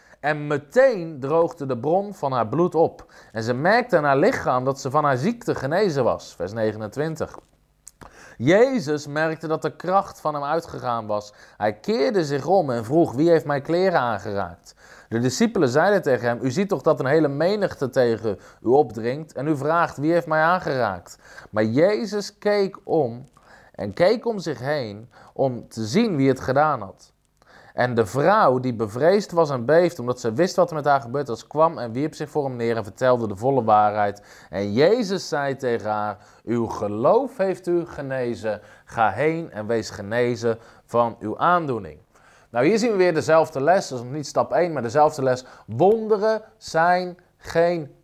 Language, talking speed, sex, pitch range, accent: Dutch, 185 wpm, male, 125-170 Hz, Dutch